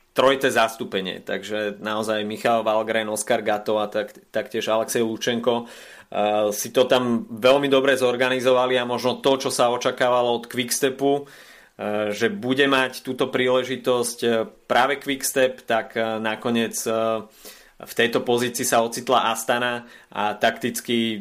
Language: Slovak